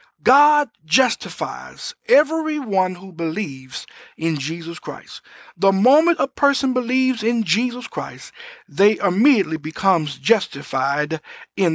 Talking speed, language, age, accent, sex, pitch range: 105 wpm, English, 50-69, American, male, 170-260 Hz